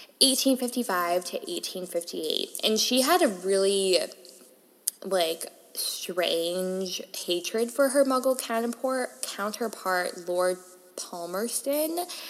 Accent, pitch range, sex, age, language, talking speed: American, 180-240 Hz, female, 10-29, English, 90 wpm